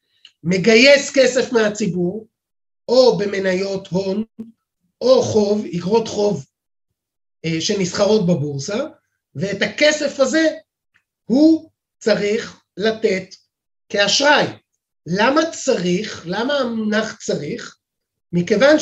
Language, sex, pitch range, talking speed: Hebrew, male, 195-270 Hz, 80 wpm